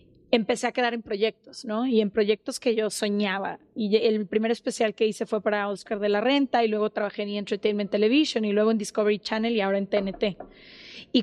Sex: female